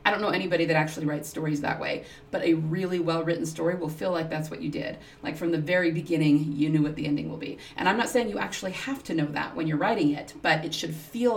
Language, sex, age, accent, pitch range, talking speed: English, female, 30-49, American, 155-195 Hz, 275 wpm